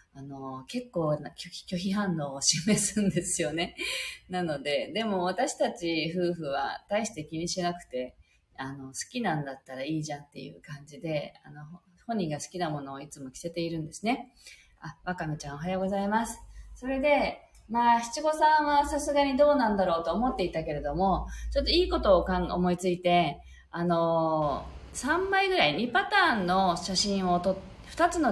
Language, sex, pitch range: Japanese, female, 155-240 Hz